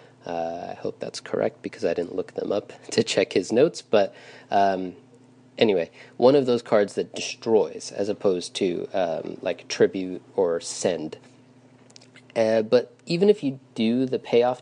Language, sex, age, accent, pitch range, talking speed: English, male, 30-49, American, 100-125 Hz, 165 wpm